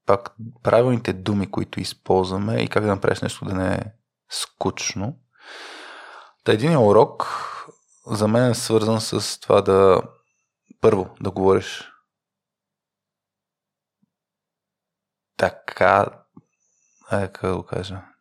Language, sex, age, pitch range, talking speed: Bulgarian, male, 20-39, 95-115 Hz, 90 wpm